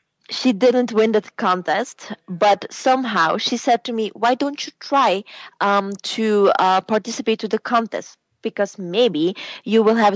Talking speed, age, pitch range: 160 wpm, 20-39, 180-225 Hz